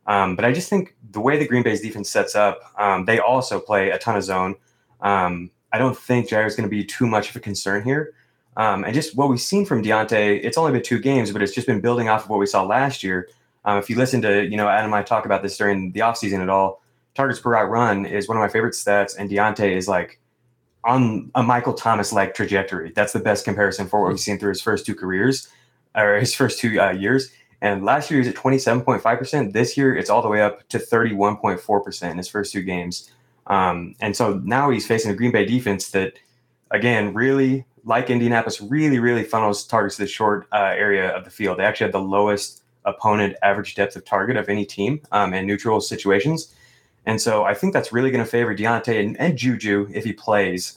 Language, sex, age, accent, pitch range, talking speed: English, male, 20-39, American, 100-125 Hz, 235 wpm